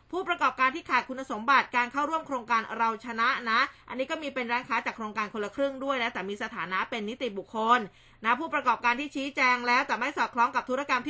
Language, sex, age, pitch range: Thai, female, 20-39, 225-280 Hz